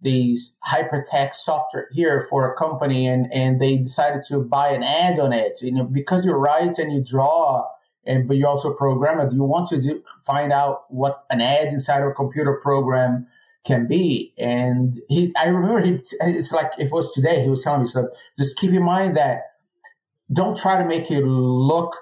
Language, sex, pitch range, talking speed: English, male, 135-160 Hz, 205 wpm